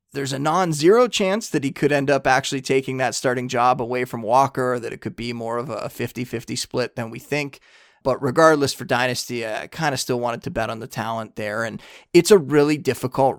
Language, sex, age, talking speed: English, male, 30-49, 230 wpm